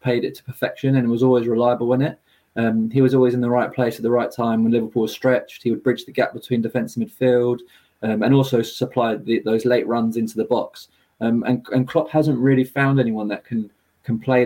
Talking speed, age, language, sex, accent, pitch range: 235 wpm, 20-39, English, male, British, 115-130 Hz